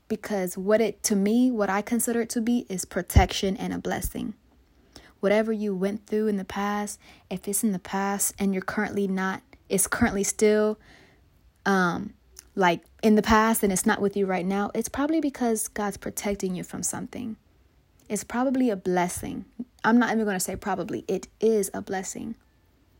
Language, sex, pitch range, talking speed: English, female, 195-220 Hz, 185 wpm